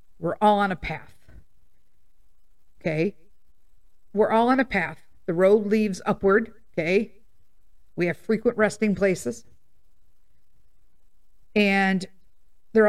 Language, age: English, 50-69